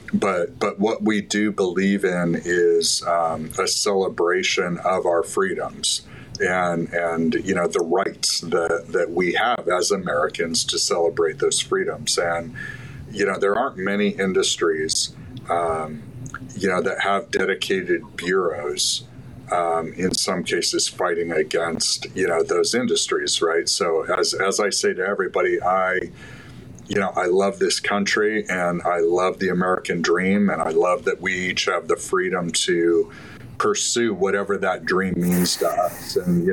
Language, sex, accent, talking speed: English, male, American, 155 wpm